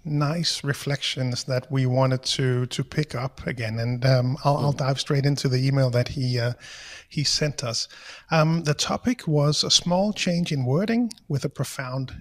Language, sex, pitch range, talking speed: English, male, 130-155 Hz, 180 wpm